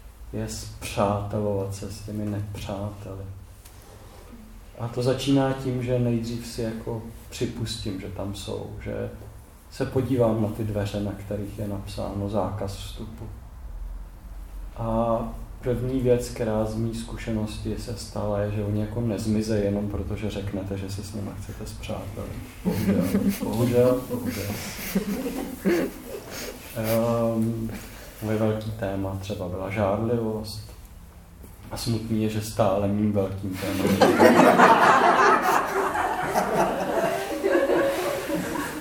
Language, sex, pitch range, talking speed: Czech, male, 100-115 Hz, 110 wpm